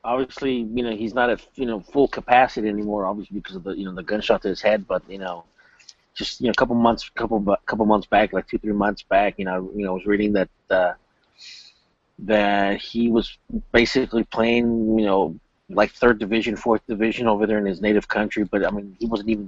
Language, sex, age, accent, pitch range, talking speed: English, male, 30-49, American, 105-115 Hz, 230 wpm